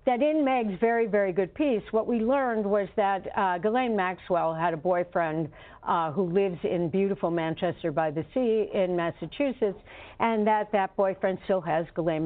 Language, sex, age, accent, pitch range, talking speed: English, female, 60-79, American, 180-235 Hz, 160 wpm